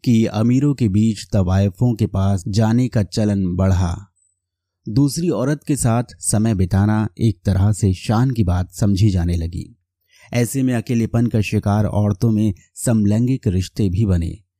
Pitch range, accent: 95-120 Hz, native